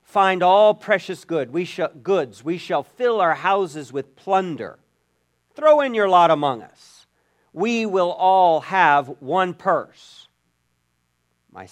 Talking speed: 125 wpm